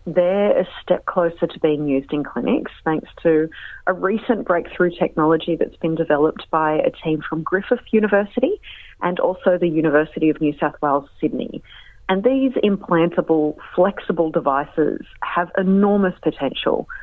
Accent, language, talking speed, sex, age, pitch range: Australian, English, 145 wpm, female, 30-49, 150-195 Hz